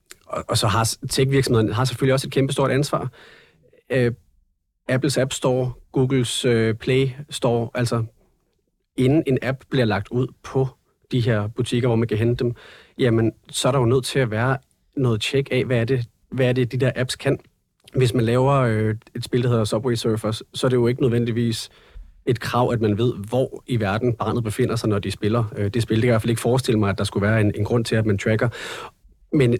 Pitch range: 110-130 Hz